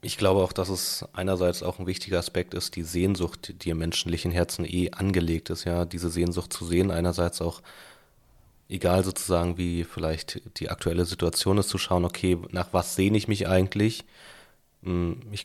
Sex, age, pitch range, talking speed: male, 20-39, 85-95 Hz, 175 wpm